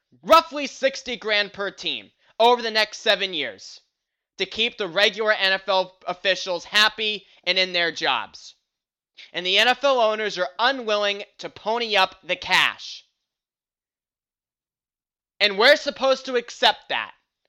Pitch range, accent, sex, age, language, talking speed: 195-245 Hz, American, male, 20-39, English, 130 wpm